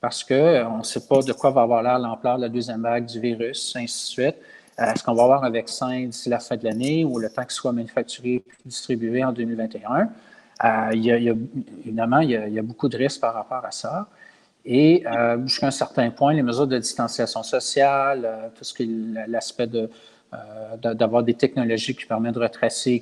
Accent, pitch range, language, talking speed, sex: Canadian, 120-145 Hz, French, 220 wpm, male